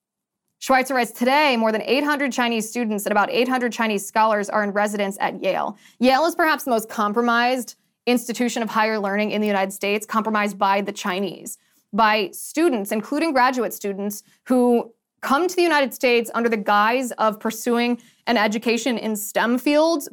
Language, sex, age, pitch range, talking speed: English, female, 20-39, 210-250 Hz, 170 wpm